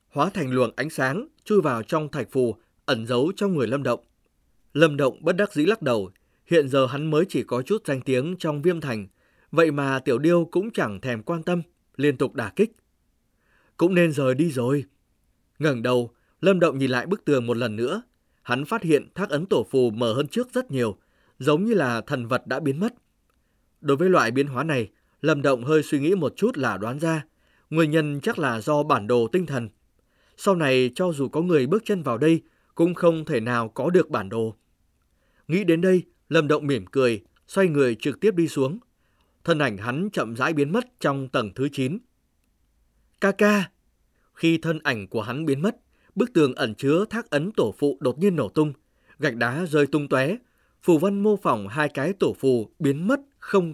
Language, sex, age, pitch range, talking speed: Vietnamese, male, 20-39, 120-170 Hz, 210 wpm